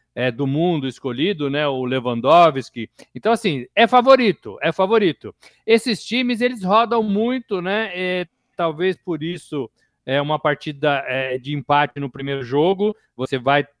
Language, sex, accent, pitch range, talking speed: Portuguese, male, Brazilian, 160-225 Hz, 150 wpm